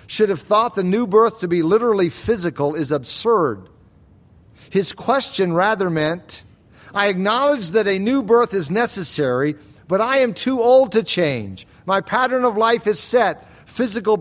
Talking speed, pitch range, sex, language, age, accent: 160 wpm, 170-235 Hz, male, English, 50-69, American